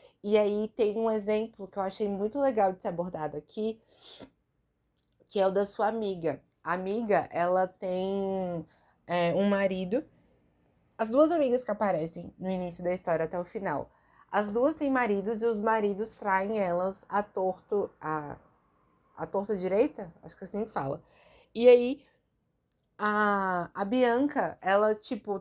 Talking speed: 150 wpm